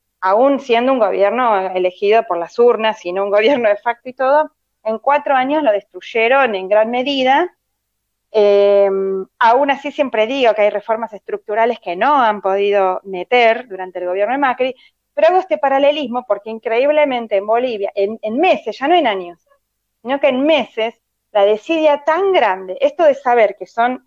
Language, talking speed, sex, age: Spanish, 175 wpm, female, 20-39